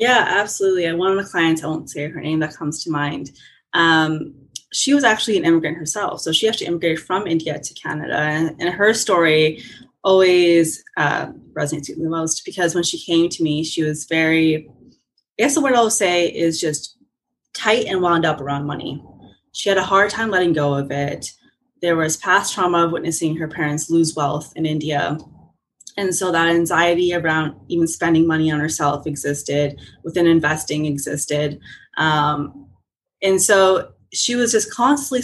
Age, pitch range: 20-39, 155-190 Hz